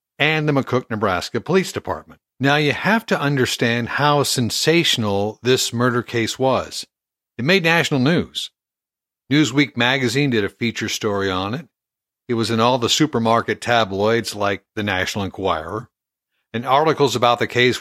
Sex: male